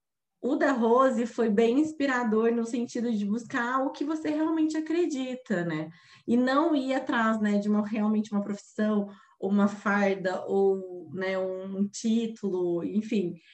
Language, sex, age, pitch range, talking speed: Portuguese, female, 20-39, 195-235 Hz, 150 wpm